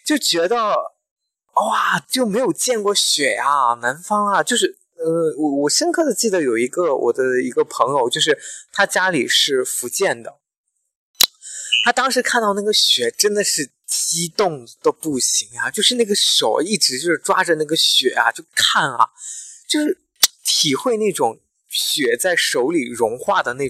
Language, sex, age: Chinese, male, 20-39